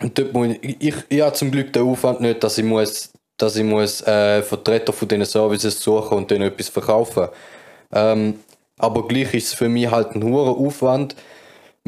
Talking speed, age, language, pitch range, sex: 190 wpm, 20-39, German, 110-130 Hz, male